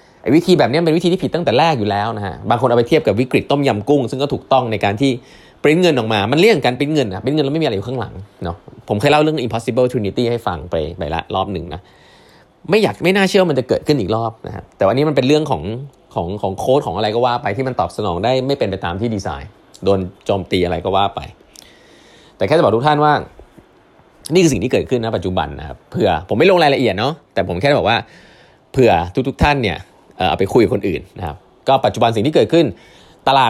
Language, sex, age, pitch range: Thai, male, 20-39, 95-145 Hz